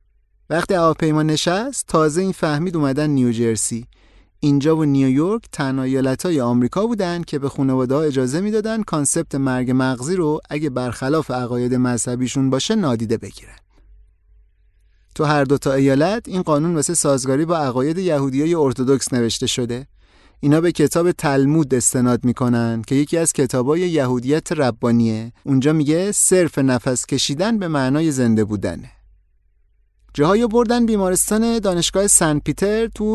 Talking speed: 135 wpm